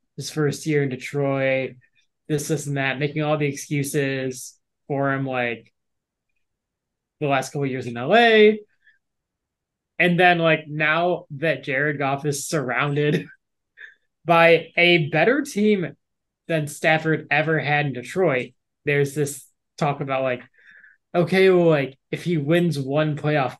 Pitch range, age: 140-175 Hz, 20-39